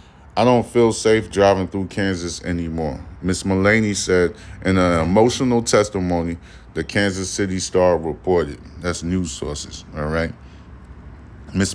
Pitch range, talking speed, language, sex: 90-105 Hz, 135 wpm, English, male